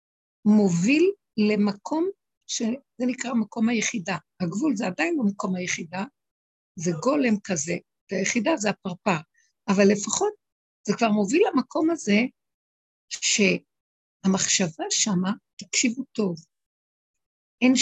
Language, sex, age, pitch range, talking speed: Hebrew, female, 60-79, 180-265 Hz, 100 wpm